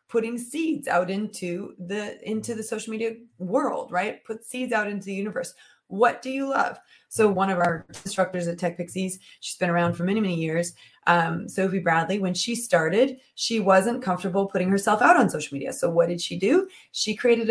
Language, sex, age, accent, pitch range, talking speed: English, female, 20-39, American, 175-225 Hz, 200 wpm